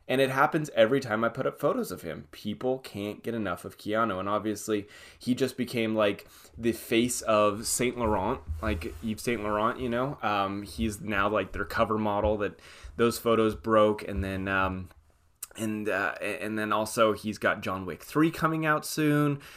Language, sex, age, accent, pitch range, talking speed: English, male, 20-39, American, 100-125 Hz, 185 wpm